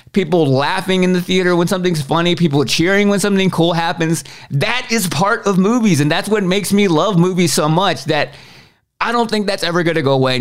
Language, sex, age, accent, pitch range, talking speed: English, male, 30-49, American, 135-180 Hz, 220 wpm